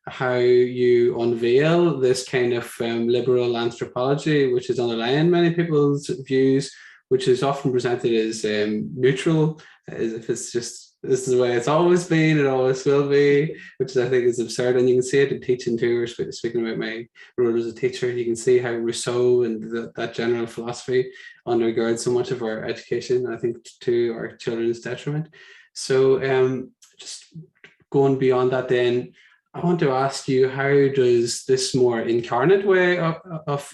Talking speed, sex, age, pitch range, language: 180 wpm, male, 20-39, 125-155 Hz, English